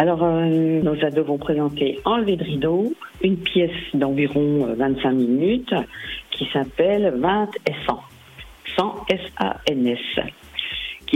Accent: French